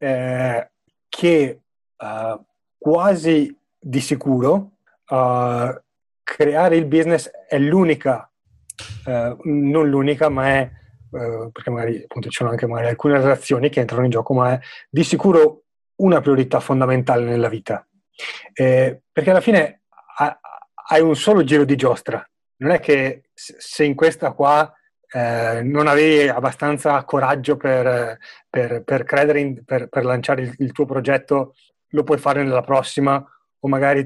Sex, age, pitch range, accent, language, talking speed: male, 30-49, 125-155 Hz, native, Italian, 145 wpm